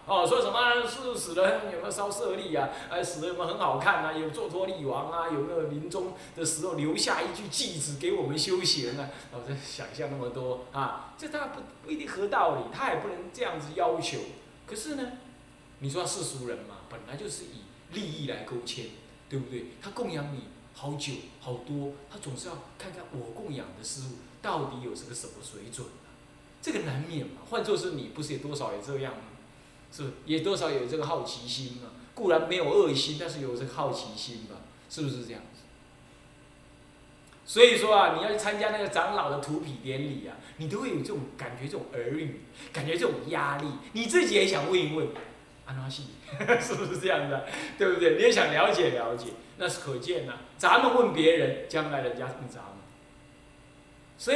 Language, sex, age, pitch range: Chinese, male, 20-39, 135-205 Hz